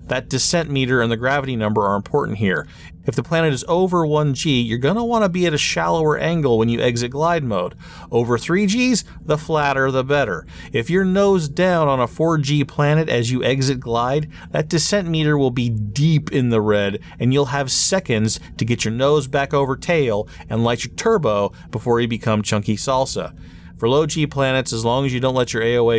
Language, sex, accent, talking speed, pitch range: English, male, American, 205 wpm, 110-150 Hz